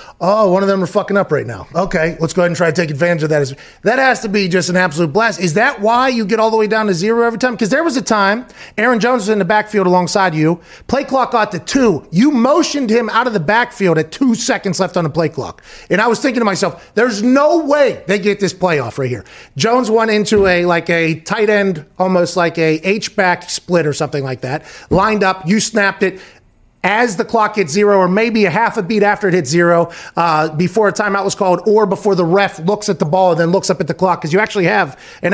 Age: 30-49